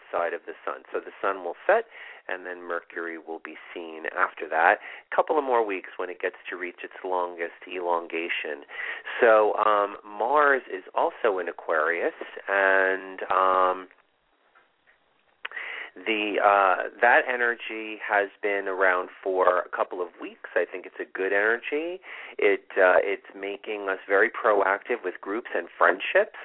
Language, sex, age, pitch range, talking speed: English, male, 40-59, 90-110 Hz, 155 wpm